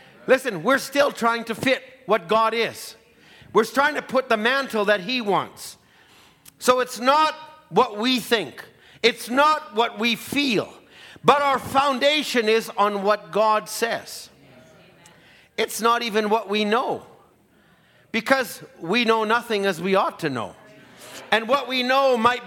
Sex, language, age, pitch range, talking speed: male, English, 50-69, 215-260 Hz, 150 wpm